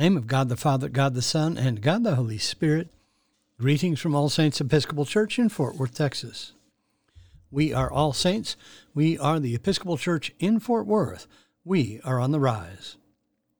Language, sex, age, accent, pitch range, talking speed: English, male, 60-79, American, 125-160 Hz, 175 wpm